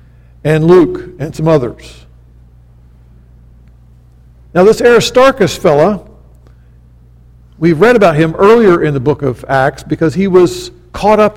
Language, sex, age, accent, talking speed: English, male, 50-69, American, 125 wpm